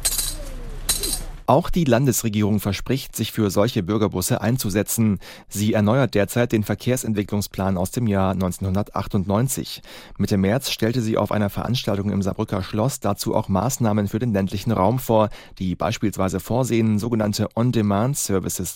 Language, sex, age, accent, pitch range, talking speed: German, male, 30-49, German, 95-115 Hz, 130 wpm